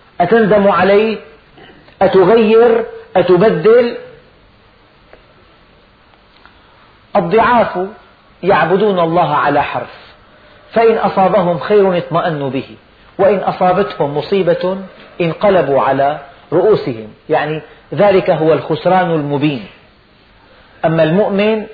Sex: male